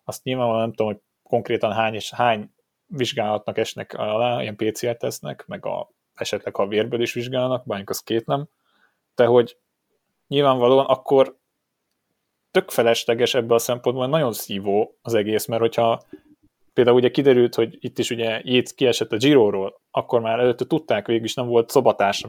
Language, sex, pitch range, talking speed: Hungarian, male, 110-125 Hz, 160 wpm